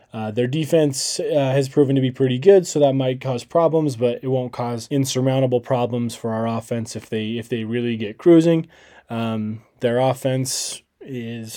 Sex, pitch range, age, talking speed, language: male, 120-145 Hz, 20-39, 180 wpm, English